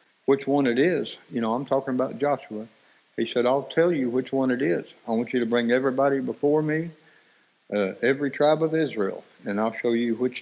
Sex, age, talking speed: male, 60-79, 215 wpm